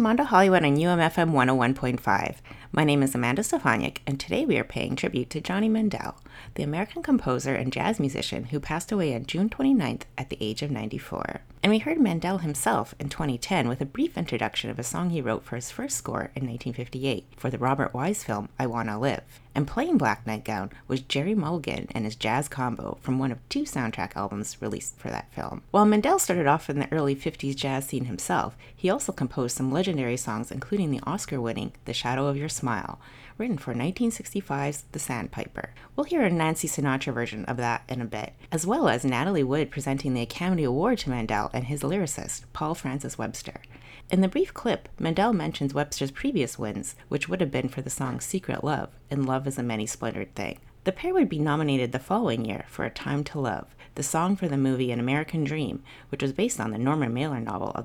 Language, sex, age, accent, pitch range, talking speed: English, female, 30-49, American, 125-170 Hz, 205 wpm